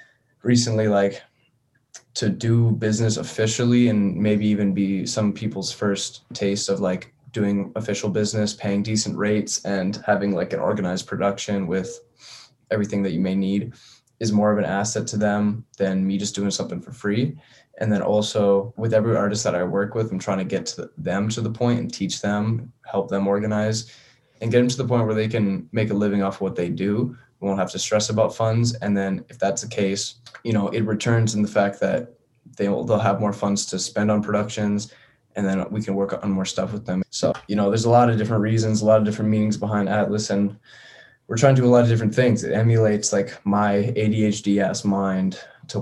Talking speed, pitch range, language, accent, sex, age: 210 wpm, 100-115 Hz, English, American, male, 10-29